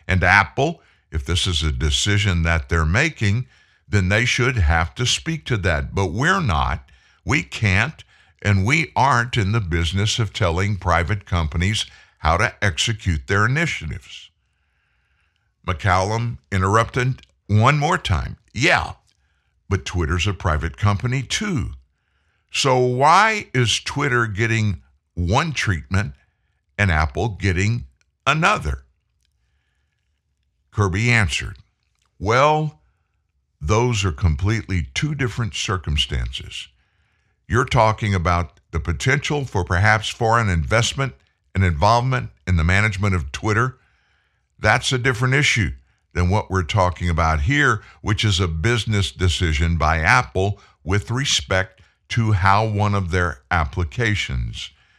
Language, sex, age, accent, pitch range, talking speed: English, male, 60-79, American, 80-115 Hz, 120 wpm